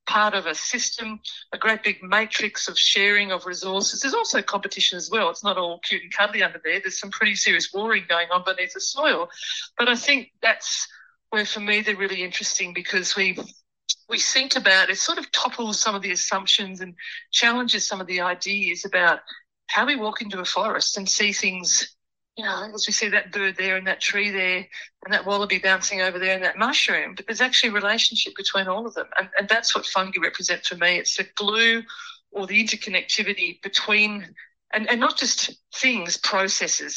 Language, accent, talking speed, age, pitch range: English, Australian, 205 wpm, 50-69, 185-220 Hz